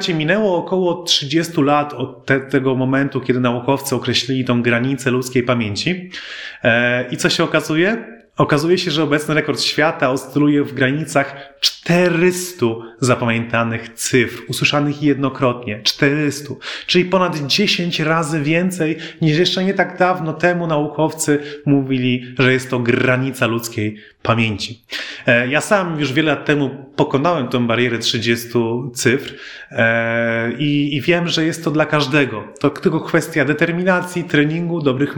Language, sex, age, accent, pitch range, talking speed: Polish, male, 30-49, native, 125-160 Hz, 130 wpm